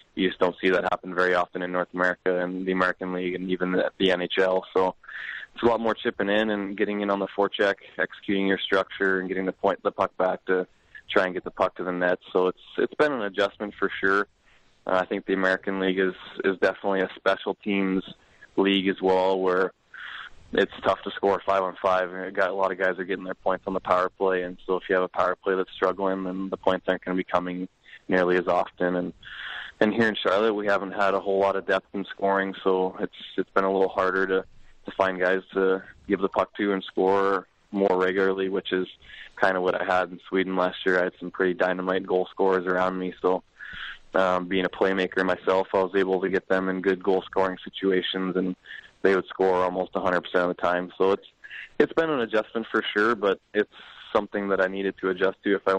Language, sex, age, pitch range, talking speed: English, male, 20-39, 90-95 Hz, 235 wpm